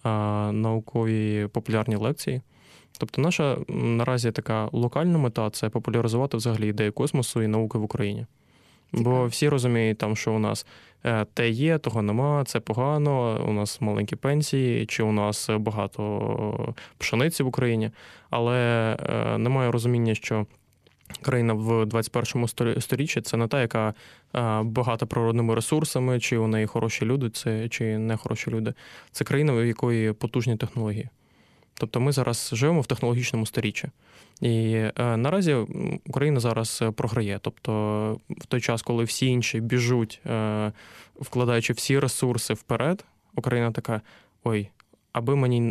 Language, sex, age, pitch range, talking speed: Ukrainian, male, 20-39, 110-125 Hz, 135 wpm